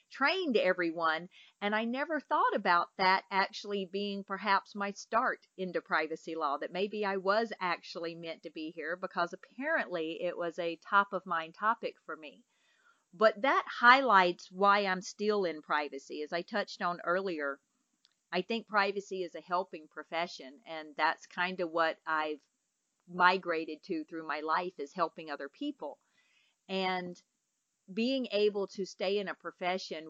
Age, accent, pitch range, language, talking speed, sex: 40-59, American, 170-205 Hz, English, 155 wpm, female